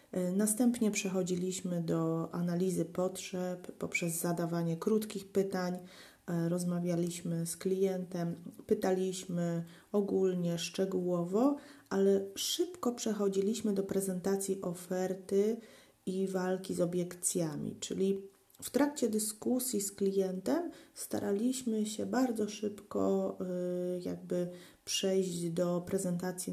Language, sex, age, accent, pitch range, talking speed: Polish, female, 30-49, native, 170-200 Hz, 90 wpm